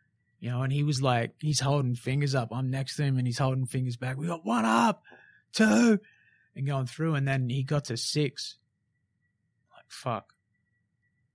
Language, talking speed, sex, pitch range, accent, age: English, 185 wpm, male, 115-130 Hz, Australian, 20-39